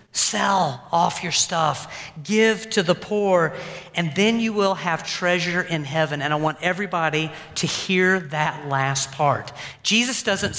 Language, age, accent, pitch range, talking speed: English, 40-59, American, 165-230 Hz, 155 wpm